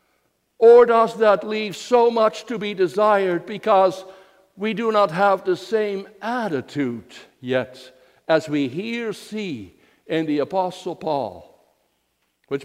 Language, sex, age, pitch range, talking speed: English, male, 60-79, 185-245 Hz, 130 wpm